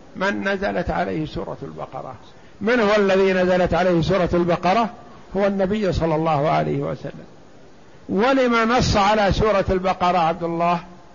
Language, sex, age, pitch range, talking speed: Arabic, male, 60-79, 170-195 Hz, 135 wpm